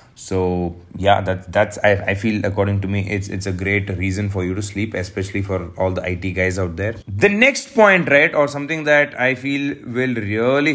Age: 30-49